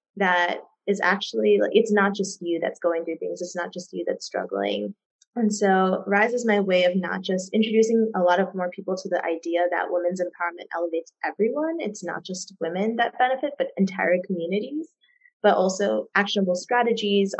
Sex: female